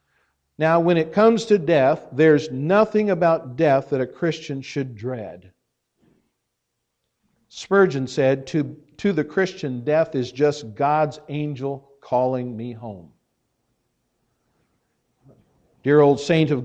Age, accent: 50-69, American